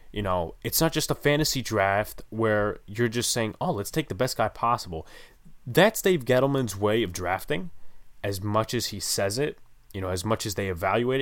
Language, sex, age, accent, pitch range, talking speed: English, male, 20-39, American, 100-120 Hz, 205 wpm